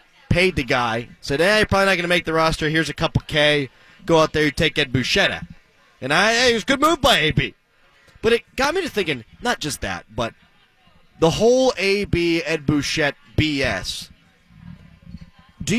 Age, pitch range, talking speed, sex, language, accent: 30-49, 135-205 Hz, 195 wpm, male, English, American